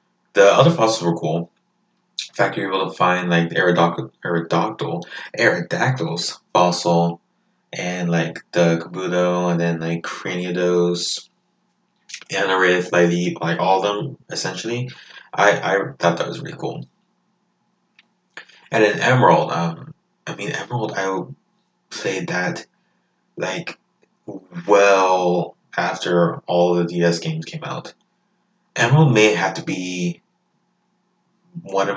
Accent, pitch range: American, 85-120 Hz